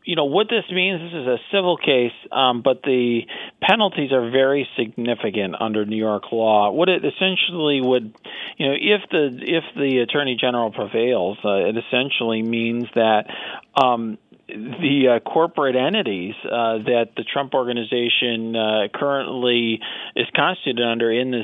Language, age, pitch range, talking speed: English, 40-59, 115-140 Hz, 155 wpm